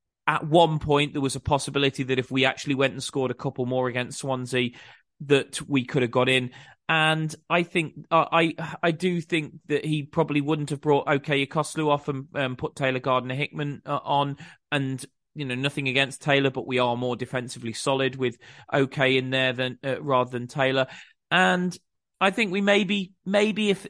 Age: 30-49